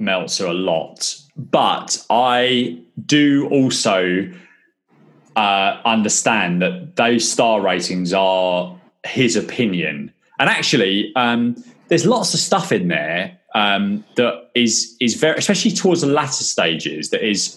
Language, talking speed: English, 125 wpm